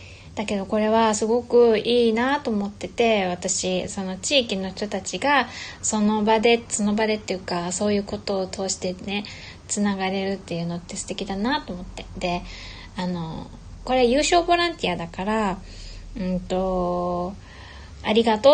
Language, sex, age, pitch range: Japanese, female, 20-39, 185-230 Hz